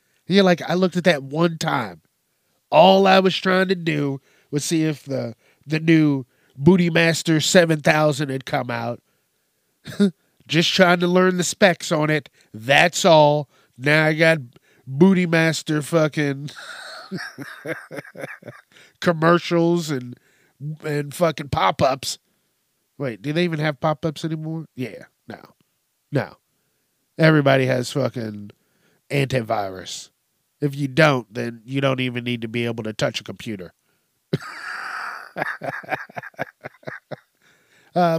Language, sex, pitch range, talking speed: English, male, 135-165 Hz, 125 wpm